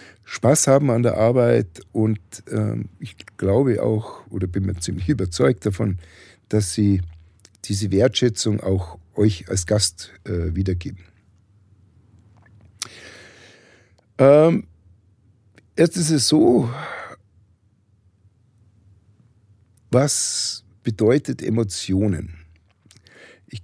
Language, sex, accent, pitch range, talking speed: German, male, German, 95-115 Hz, 90 wpm